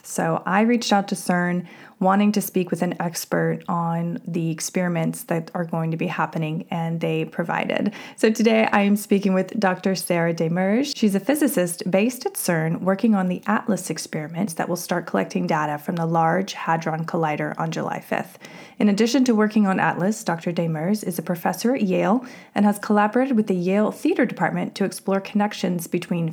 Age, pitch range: 20-39, 170-205 Hz